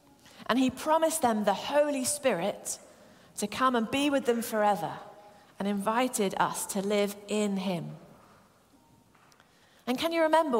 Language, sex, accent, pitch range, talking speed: English, female, British, 195-255 Hz, 140 wpm